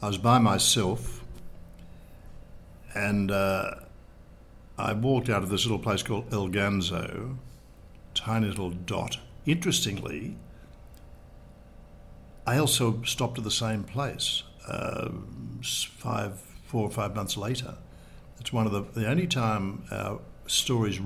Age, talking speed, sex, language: 60-79, 125 wpm, male, English